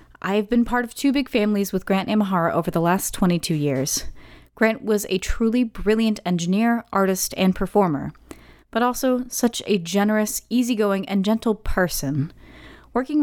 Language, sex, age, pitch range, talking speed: English, female, 30-49, 180-215 Hz, 160 wpm